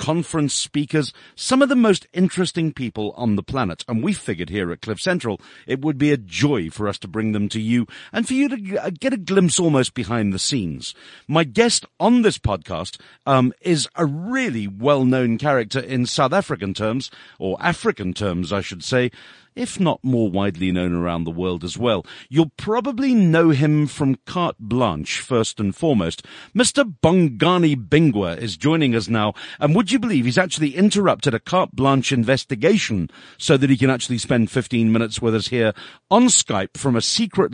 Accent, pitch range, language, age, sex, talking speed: British, 110-165 Hz, English, 50-69, male, 185 wpm